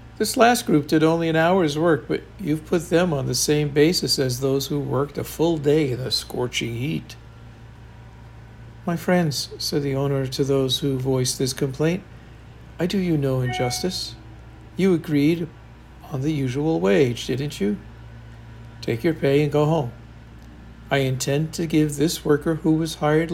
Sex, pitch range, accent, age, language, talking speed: male, 115-155 Hz, American, 60-79, English, 170 wpm